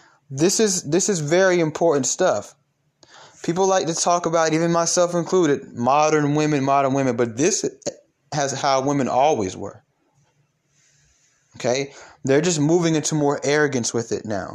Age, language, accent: 30-49, English, American